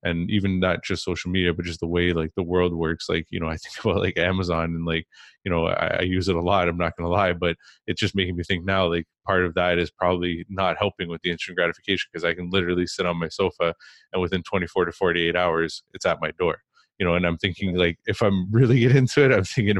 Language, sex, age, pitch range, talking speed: English, male, 20-39, 85-100 Hz, 265 wpm